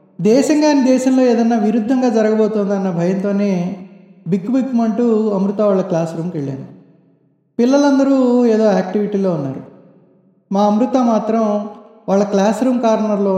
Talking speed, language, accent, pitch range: 115 wpm, Telugu, native, 190-230 Hz